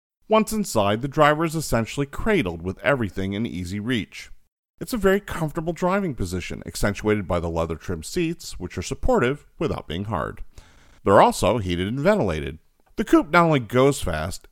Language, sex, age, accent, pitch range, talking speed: English, male, 40-59, American, 90-140 Hz, 170 wpm